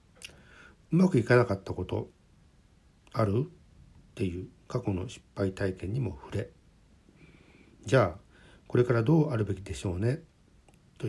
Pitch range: 95-125 Hz